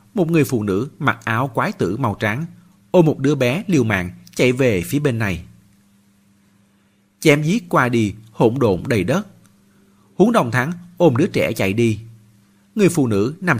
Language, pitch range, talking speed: Vietnamese, 100-155 Hz, 180 wpm